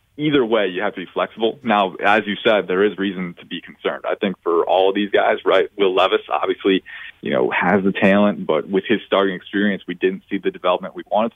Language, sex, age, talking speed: English, male, 30-49, 240 wpm